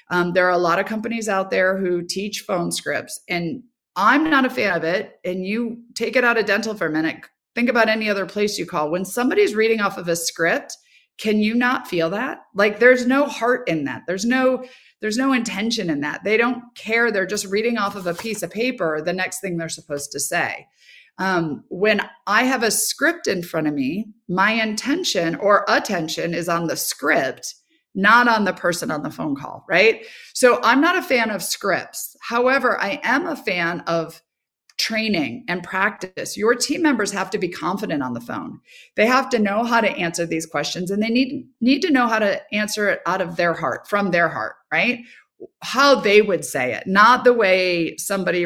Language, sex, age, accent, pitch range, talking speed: English, female, 30-49, American, 175-245 Hz, 210 wpm